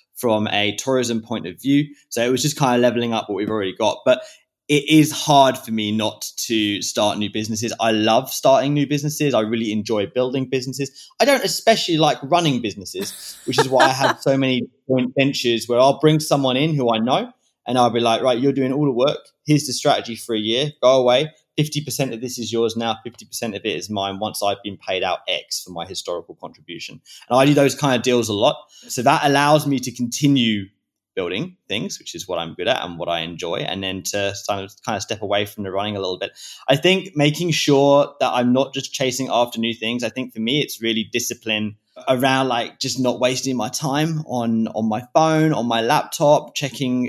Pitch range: 110-140 Hz